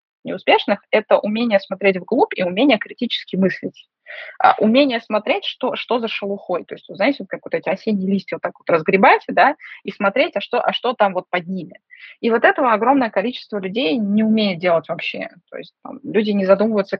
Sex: female